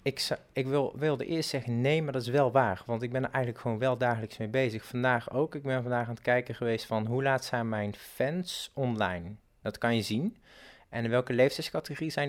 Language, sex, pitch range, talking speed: Dutch, male, 110-135 Hz, 225 wpm